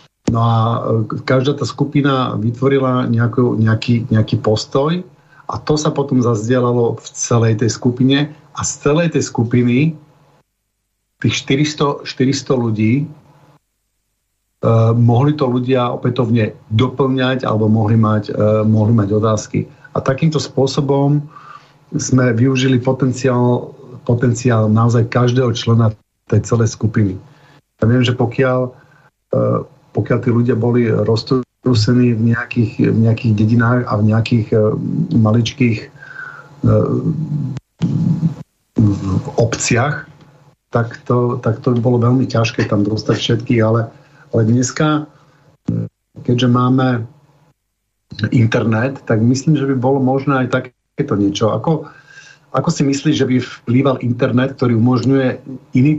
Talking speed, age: 120 wpm, 50-69